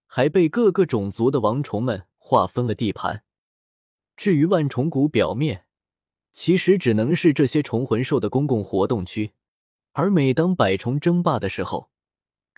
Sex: male